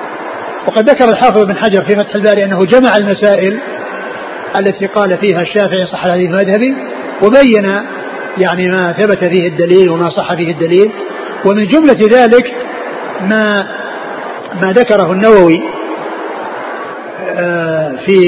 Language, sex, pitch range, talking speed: Arabic, male, 190-230 Hz, 120 wpm